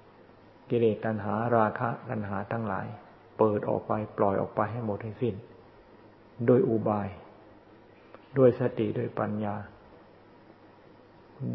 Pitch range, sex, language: 105-115 Hz, male, Thai